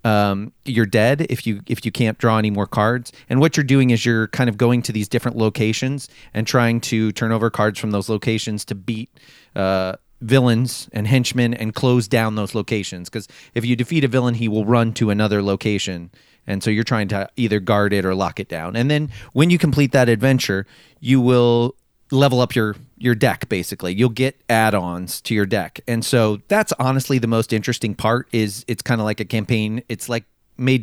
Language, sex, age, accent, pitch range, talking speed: English, male, 30-49, American, 105-125 Hz, 210 wpm